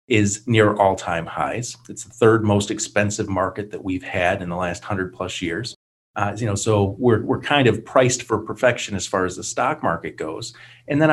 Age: 40-59